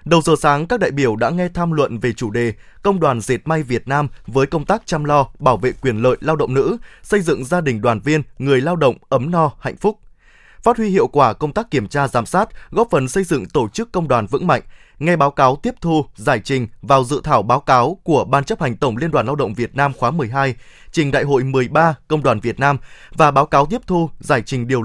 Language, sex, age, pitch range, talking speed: Vietnamese, male, 20-39, 130-165 Hz, 255 wpm